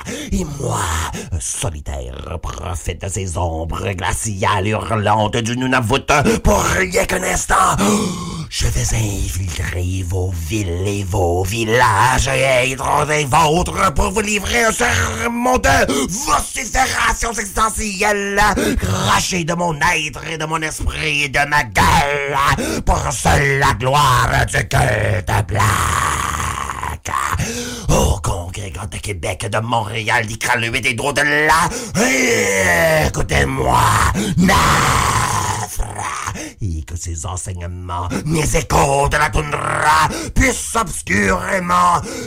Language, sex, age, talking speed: French, male, 50-69, 115 wpm